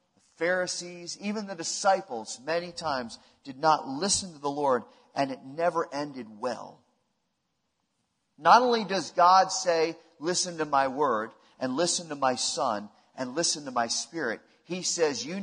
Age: 40-59